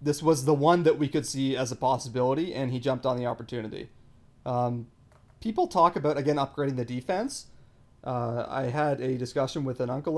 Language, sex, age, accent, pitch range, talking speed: English, male, 30-49, American, 125-150 Hz, 195 wpm